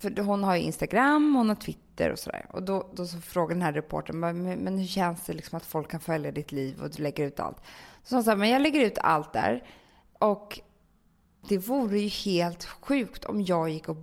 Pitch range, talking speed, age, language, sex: 175-245 Hz, 230 wpm, 20-39, Swedish, female